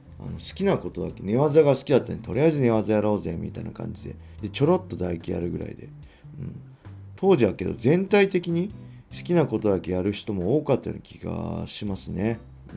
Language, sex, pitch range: Japanese, male, 90-125 Hz